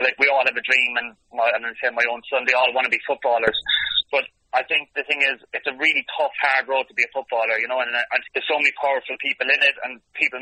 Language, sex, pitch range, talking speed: English, male, 125-140 Hz, 290 wpm